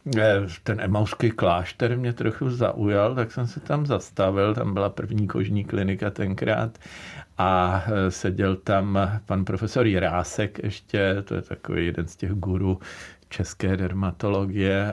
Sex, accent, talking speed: male, native, 135 wpm